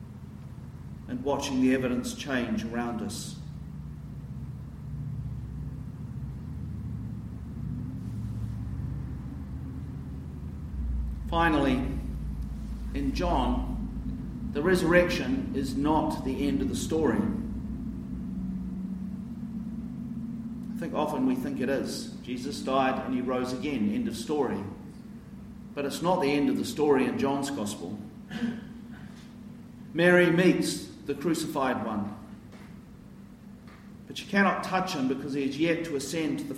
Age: 50-69